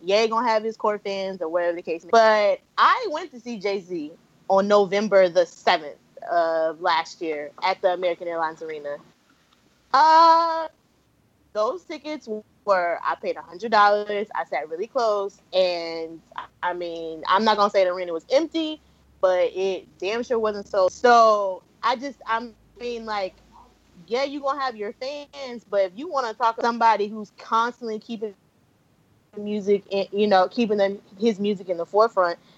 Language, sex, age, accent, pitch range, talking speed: English, female, 20-39, American, 190-245 Hz, 170 wpm